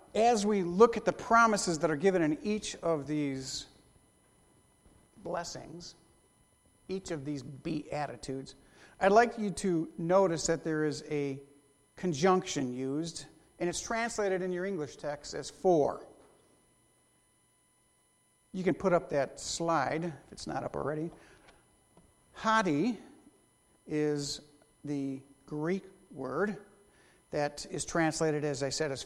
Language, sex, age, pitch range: English, male, 50-69, 150-195 Hz